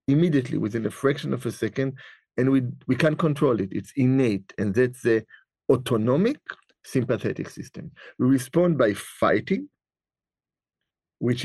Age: 50-69